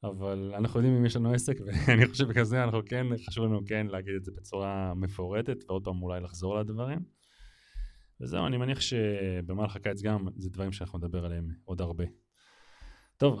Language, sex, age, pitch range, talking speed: Hebrew, male, 20-39, 95-130 Hz, 175 wpm